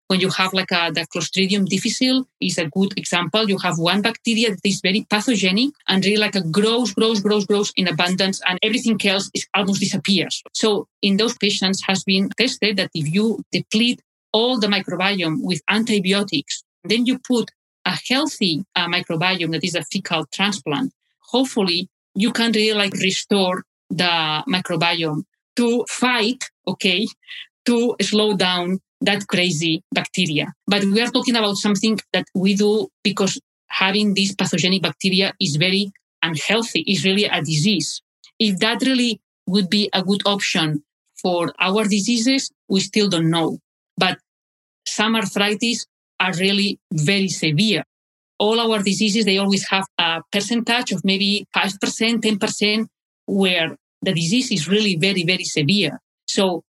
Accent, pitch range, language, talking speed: Spanish, 185-220 Hz, English, 155 wpm